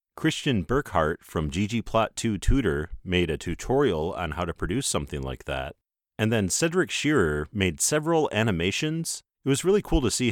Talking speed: 155 wpm